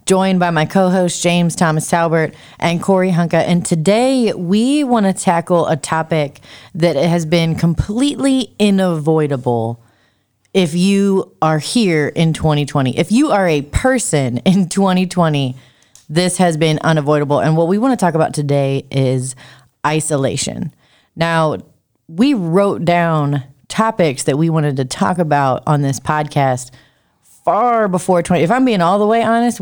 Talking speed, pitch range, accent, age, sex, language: 150 wpm, 145-185 Hz, American, 30-49, female, English